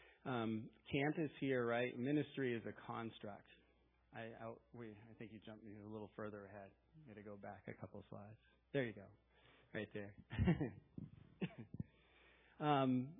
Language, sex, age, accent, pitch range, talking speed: English, male, 40-59, American, 110-135 Hz, 170 wpm